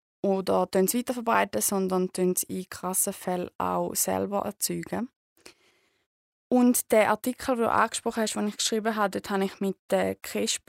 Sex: female